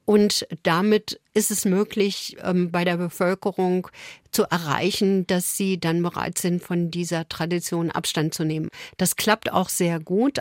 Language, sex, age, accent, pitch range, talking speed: German, female, 50-69, German, 180-215 Hz, 150 wpm